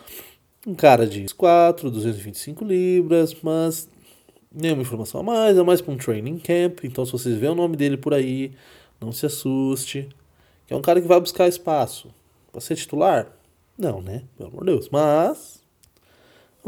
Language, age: Portuguese, 20-39